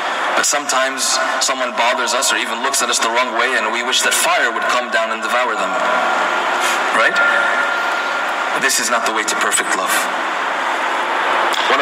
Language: English